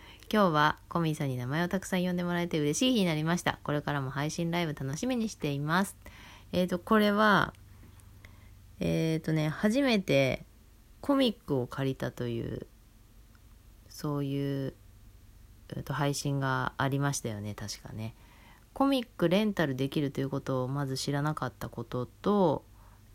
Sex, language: female, Japanese